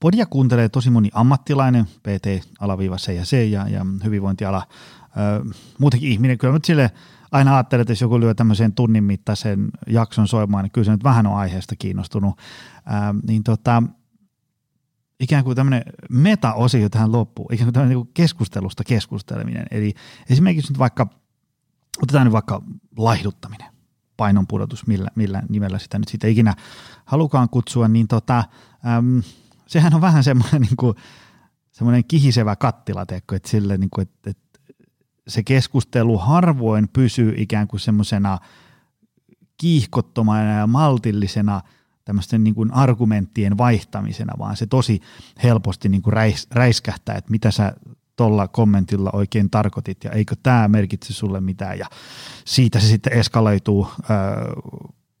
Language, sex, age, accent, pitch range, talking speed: Finnish, male, 30-49, native, 105-125 Hz, 135 wpm